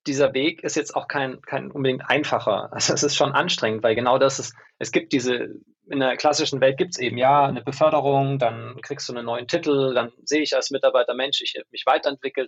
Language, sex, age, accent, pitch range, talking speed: German, male, 20-39, German, 120-150 Hz, 220 wpm